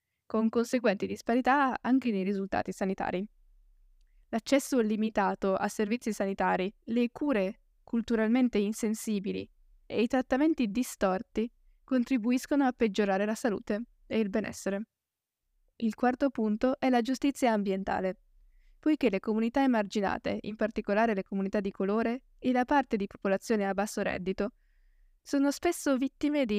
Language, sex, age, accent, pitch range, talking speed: Italian, female, 10-29, native, 200-250 Hz, 130 wpm